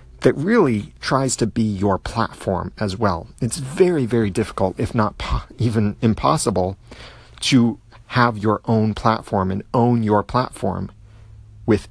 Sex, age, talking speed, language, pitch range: male, 40-59, 135 wpm, English, 95-120 Hz